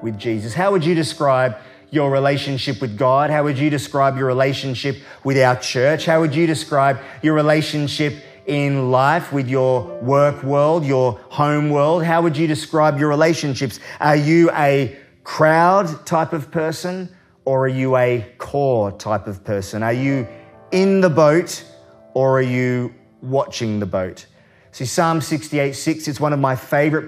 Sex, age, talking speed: male, 30-49, 165 wpm